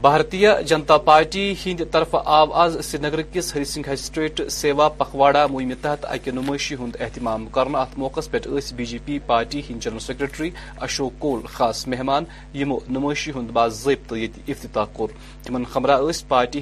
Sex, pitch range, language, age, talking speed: male, 125-145 Hz, Urdu, 30-49, 160 wpm